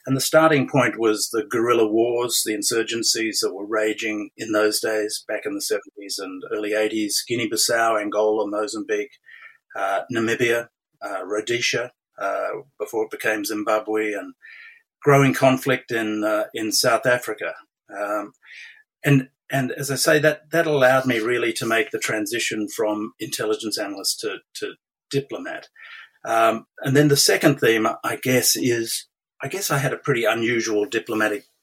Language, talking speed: English, 155 wpm